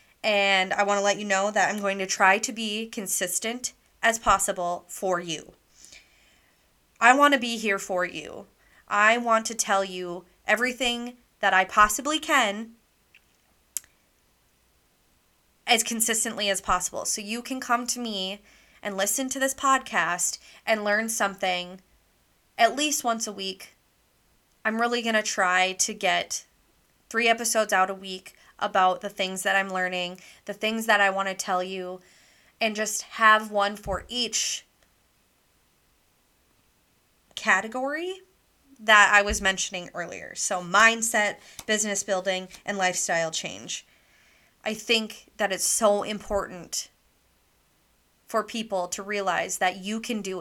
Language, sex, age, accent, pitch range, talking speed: English, female, 20-39, American, 190-225 Hz, 140 wpm